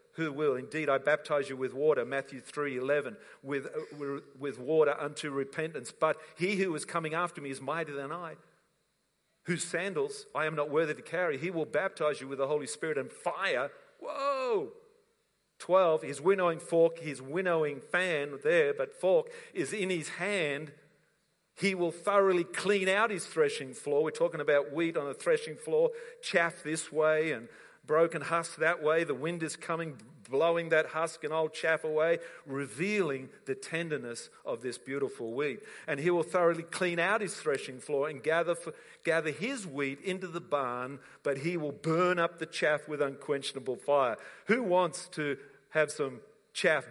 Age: 50-69